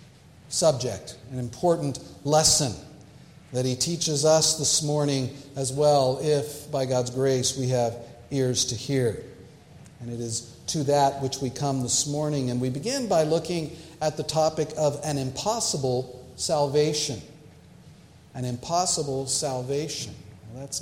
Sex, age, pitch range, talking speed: male, 50-69, 135-170 Hz, 135 wpm